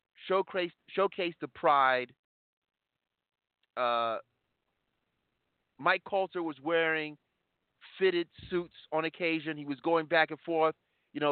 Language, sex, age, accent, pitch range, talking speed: English, male, 40-59, American, 115-160 Hz, 110 wpm